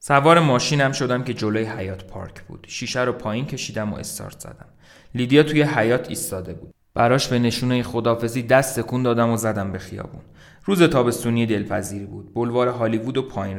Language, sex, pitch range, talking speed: Persian, male, 110-150 Hz, 170 wpm